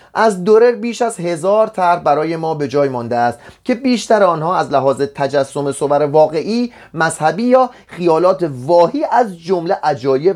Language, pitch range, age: Persian, 140-200 Hz, 30-49